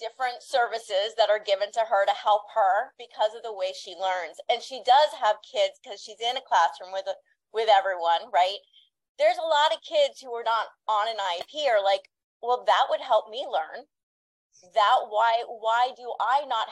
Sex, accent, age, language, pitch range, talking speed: female, American, 30-49, English, 210-275 Hz, 195 wpm